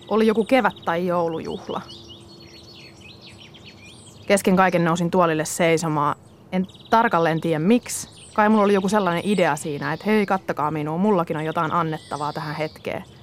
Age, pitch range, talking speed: 30-49, 155-195 Hz, 140 wpm